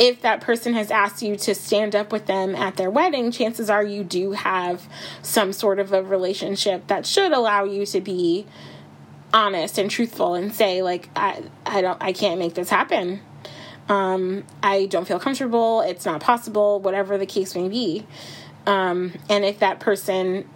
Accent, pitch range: American, 190-250 Hz